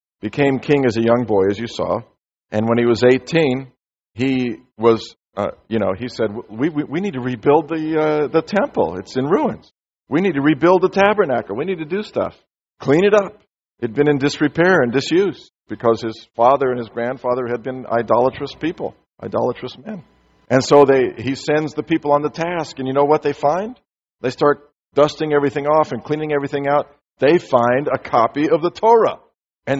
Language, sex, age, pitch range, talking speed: English, male, 50-69, 125-160 Hz, 200 wpm